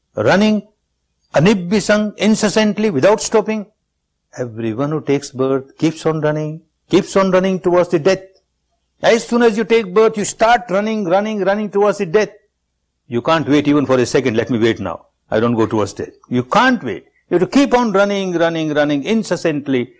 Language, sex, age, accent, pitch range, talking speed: English, male, 60-79, Indian, 130-200 Hz, 180 wpm